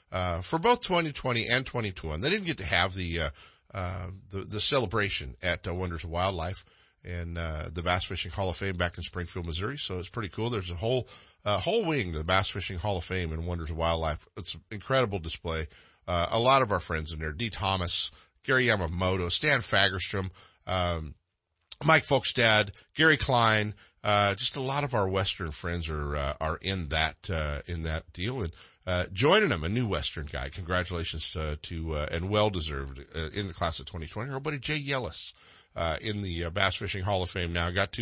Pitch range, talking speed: 85-110 Hz, 210 wpm